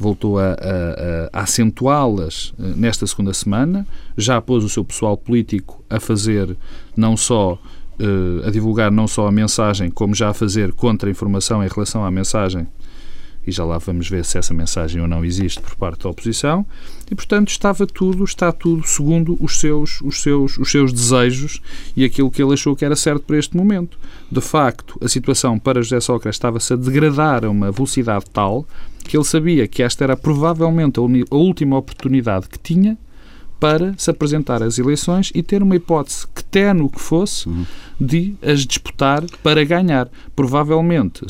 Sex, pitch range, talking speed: male, 105-145 Hz, 175 wpm